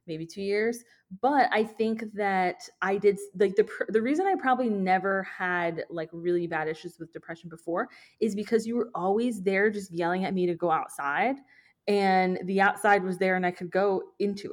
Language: English